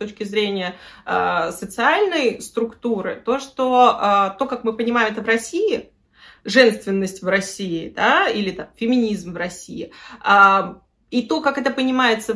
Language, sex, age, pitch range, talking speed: Russian, female, 20-39, 200-260 Hz, 150 wpm